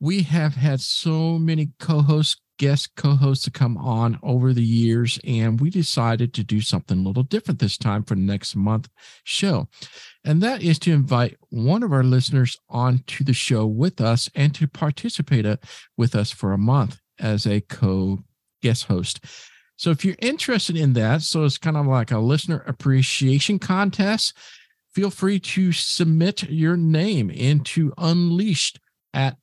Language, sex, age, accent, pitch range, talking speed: English, male, 50-69, American, 115-150 Hz, 165 wpm